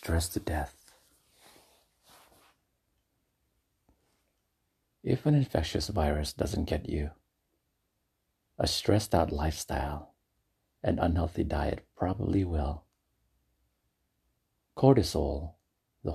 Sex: male